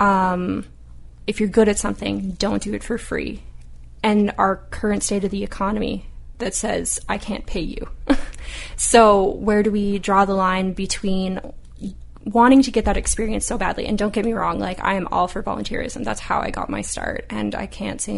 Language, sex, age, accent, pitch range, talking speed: English, female, 20-39, American, 180-215 Hz, 200 wpm